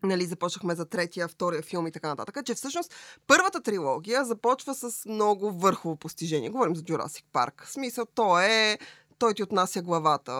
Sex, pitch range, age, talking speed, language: female, 180-240 Hz, 20-39, 175 wpm, Bulgarian